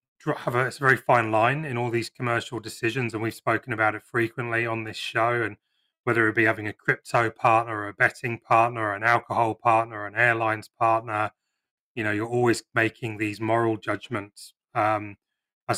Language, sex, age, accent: English, male, 30-49, British